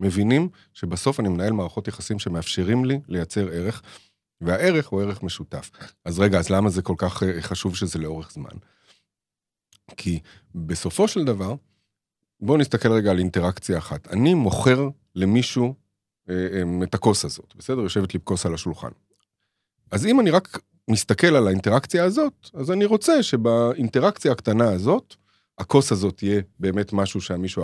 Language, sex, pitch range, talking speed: Hebrew, male, 95-125 Hz, 150 wpm